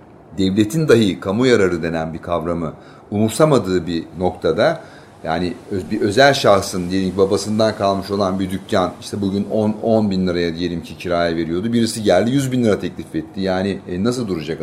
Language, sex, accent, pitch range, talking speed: Turkish, male, native, 90-120 Hz, 160 wpm